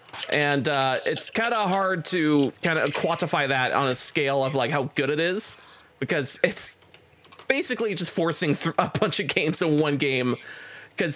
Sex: male